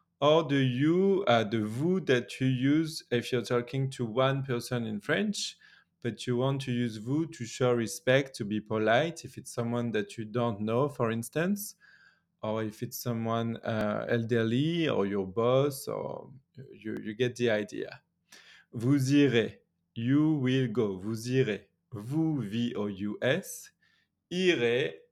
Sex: male